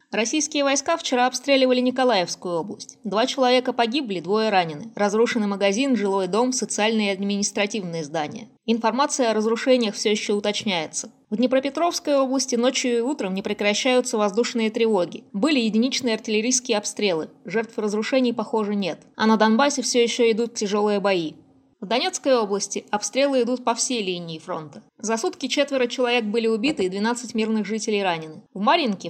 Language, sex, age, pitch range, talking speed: Russian, female, 20-39, 205-255 Hz, 150 wpm